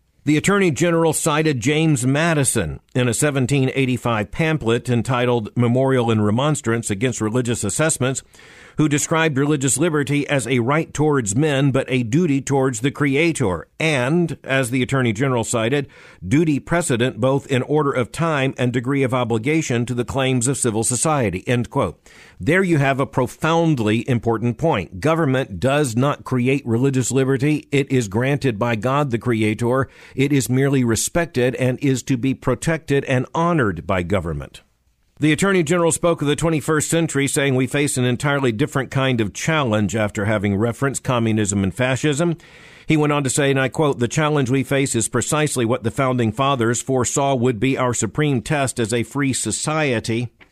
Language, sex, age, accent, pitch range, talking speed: English, male, 50-69, American, 120-150 Hz, 165 wpm